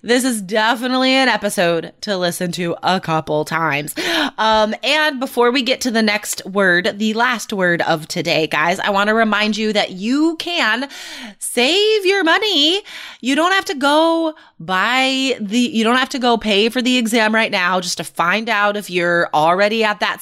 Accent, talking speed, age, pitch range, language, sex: American, 190 wpm, 20-39, 190-275 Hz, English, female